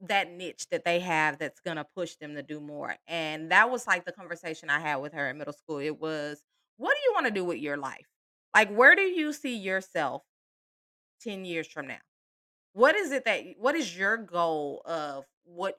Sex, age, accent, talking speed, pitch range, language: female, 30-49, American, 215 wpm, 155-205 Hz, English